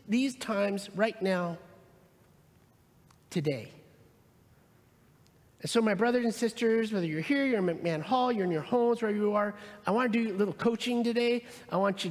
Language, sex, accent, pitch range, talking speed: English, male, American, 150-215 Hz, 180 wpm